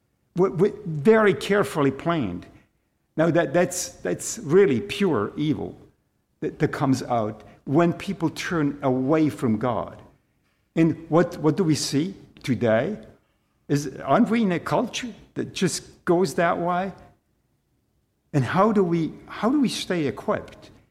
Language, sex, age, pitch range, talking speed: English, male, 50-69, 125-170 Hz, 140 wpm